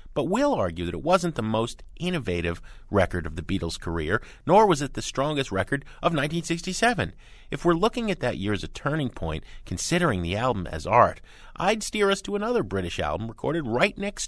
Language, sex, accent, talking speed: English, male, American, 200 wpm